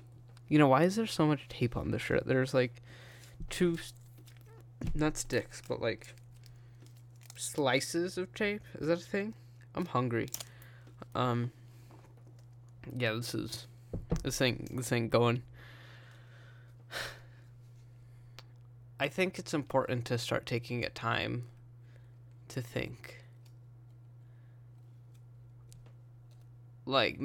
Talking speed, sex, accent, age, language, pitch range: 105 wpm, male, American, 20-39, English, 120-130 Hz